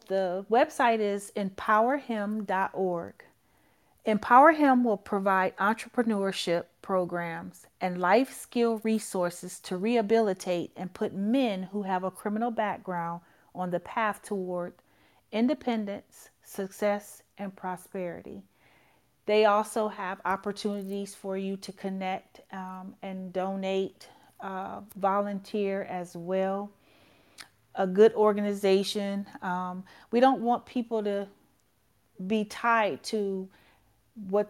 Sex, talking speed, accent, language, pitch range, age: female, 105 wpm, American, English, 185-220 Hz, 40-59